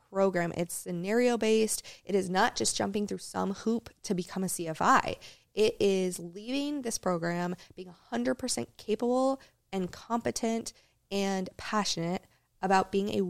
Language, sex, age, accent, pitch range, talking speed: English, female, 20-39, American, 175-210 Hz, 135 wpm